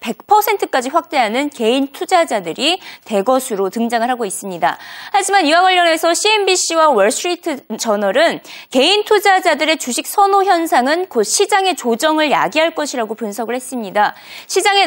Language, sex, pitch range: Korean, female, 245-370 Hz